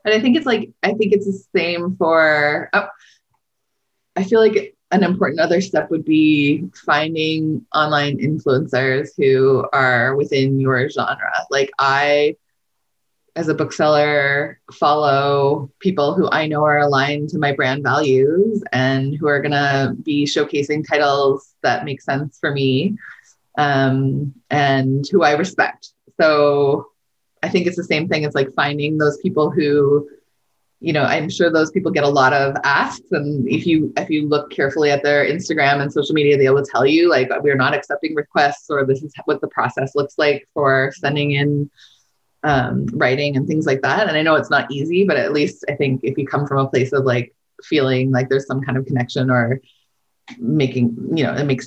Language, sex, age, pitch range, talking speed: English, female, 20-39, 135-155 Hz, 180 wpm